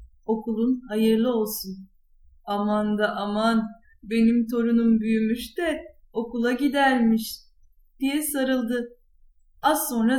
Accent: native